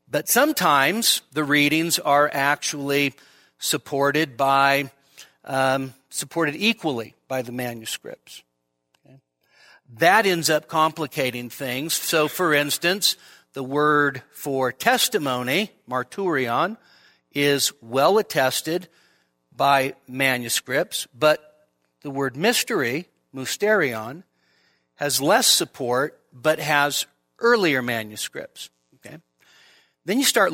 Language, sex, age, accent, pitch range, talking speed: English, male, 50-69, American, 130-160 Hz, 90 wpm